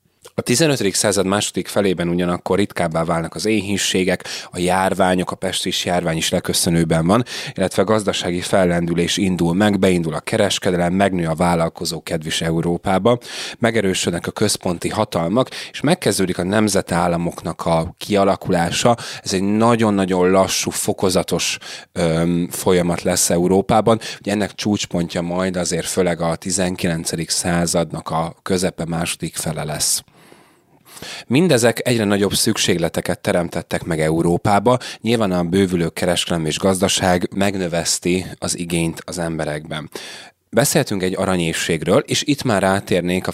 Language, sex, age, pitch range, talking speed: Hungarian, male, 30-49, 85-100 Hz, 125 wpm